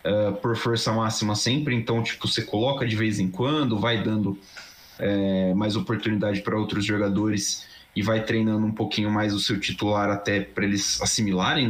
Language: Portuguese